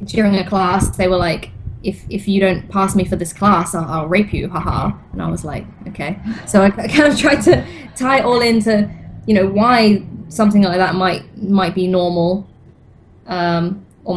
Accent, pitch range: British, 175-200 Hz